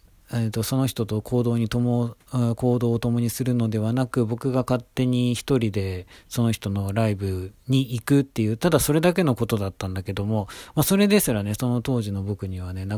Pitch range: 100-135 Hz